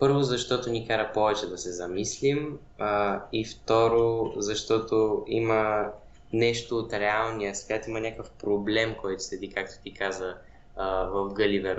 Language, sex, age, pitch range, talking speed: Bulgarian, male, 20-39, 100-120 Hz, 145 wpm